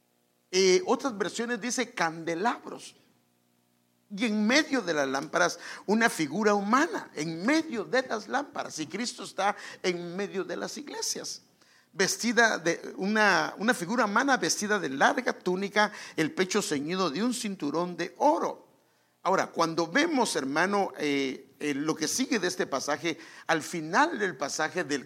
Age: 50-69